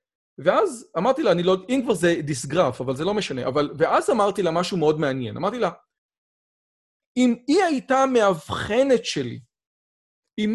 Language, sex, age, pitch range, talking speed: Hebrew, male, 40-59, 180-255 Hz, 155 wpm